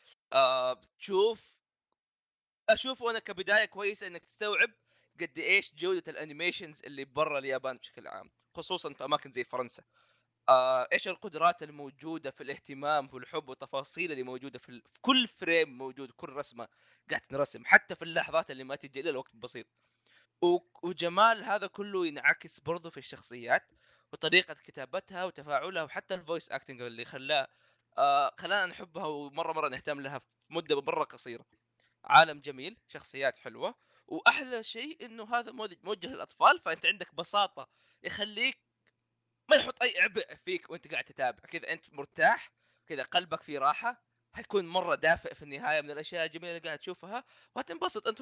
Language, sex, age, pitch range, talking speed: Arabic, male, 20-39, 140-210 Hz, 145 wpm